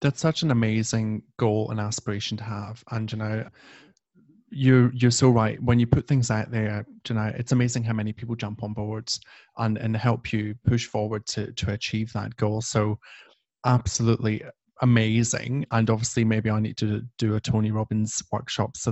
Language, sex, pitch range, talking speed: English, male, 110-125 Hz, 185 wpm